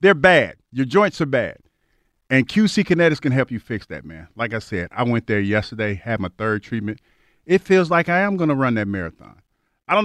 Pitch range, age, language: 110-170 Hz, 40-59, English